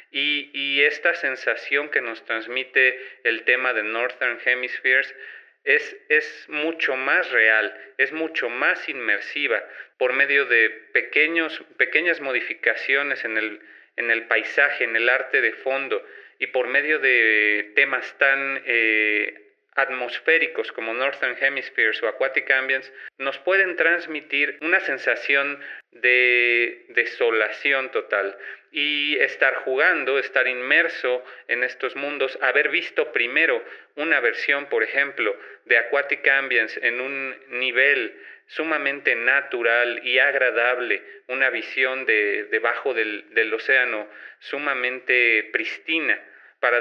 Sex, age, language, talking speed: male, 40-59, Spanish, 120 wpm